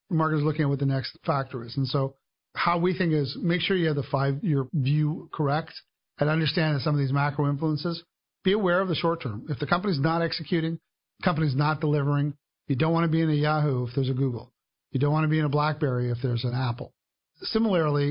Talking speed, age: 240 wpm, 40-59